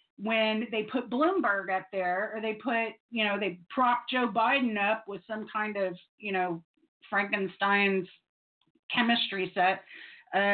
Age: 30-49